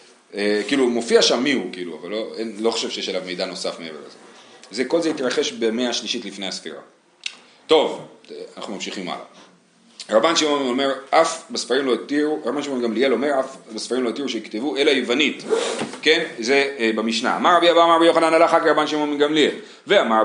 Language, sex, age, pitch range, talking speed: Hebrew, male, 40-59, 120-180 Hz, 185 wpm